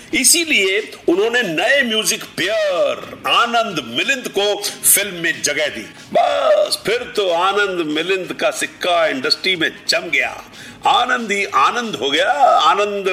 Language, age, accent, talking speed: Hindi, 50-69, native, 135 wpm